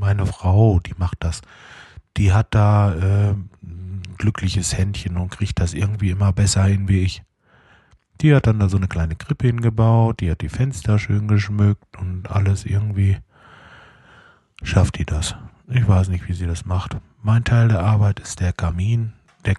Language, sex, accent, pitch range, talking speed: German, male, German, 95-110 Hz, 175 wpm